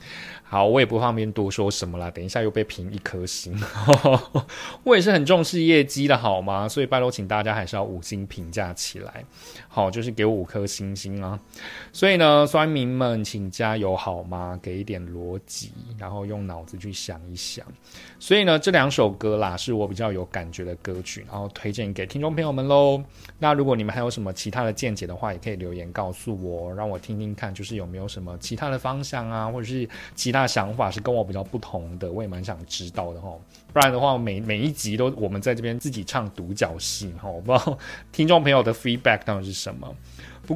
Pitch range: 95-120 Hz